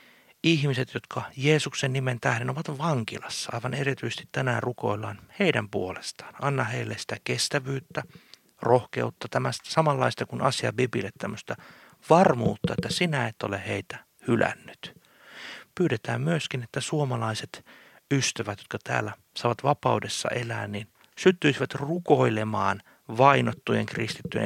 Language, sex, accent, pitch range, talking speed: Finnish, male, native, 110-150 Hz, 110 wpm